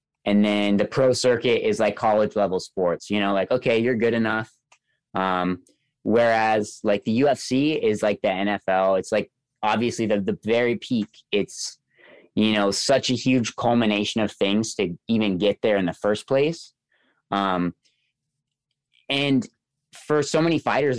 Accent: American